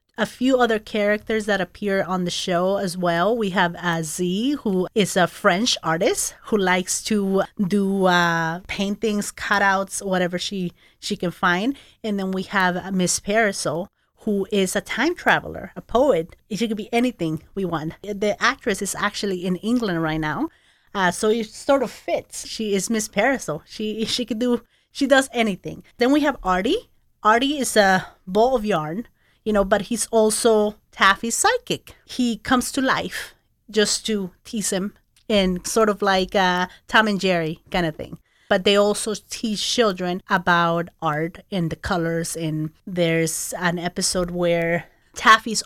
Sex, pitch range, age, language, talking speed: female, 180-220 Hz, 30-49, English, 170 wpm